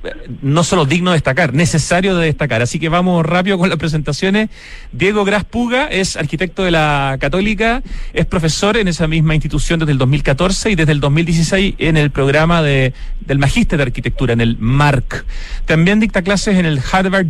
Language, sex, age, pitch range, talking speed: Spanish, male, 40-59, 150-195 Hz, 180 wpm